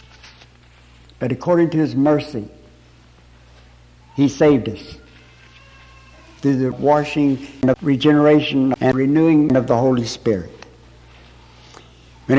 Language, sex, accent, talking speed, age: English, male, American, 95 wpm, 60-79